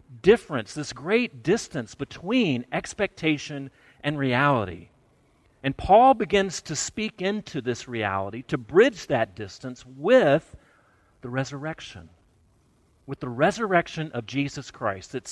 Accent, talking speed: American, 120 wpm